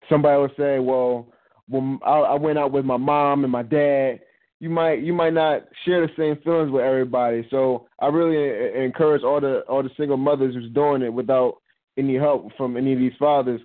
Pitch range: 125-150 Hz